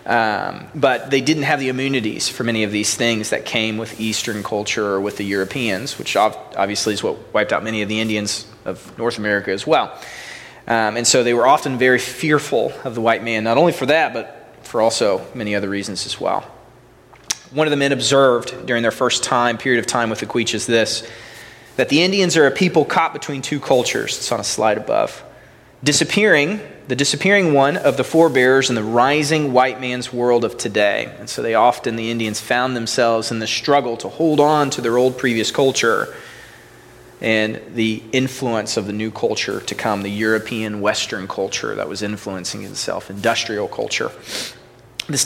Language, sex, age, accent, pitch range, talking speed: English, male, 30-49, American, 110-135 Hz, 190 wpm